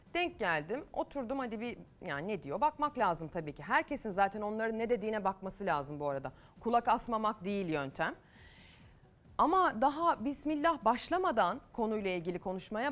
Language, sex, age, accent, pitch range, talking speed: Turkish, female, 30-49, native, 175-260 Hz, 150 wpm